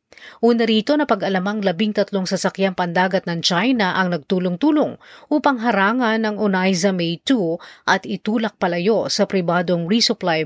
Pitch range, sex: 175-215 Hz, female